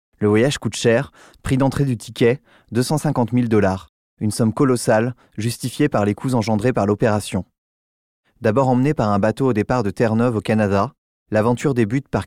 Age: 20-39